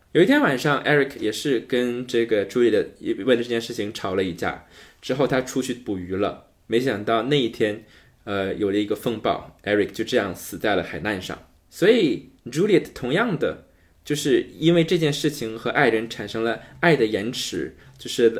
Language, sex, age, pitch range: Chinese, male, 20-39, 105-145 Hz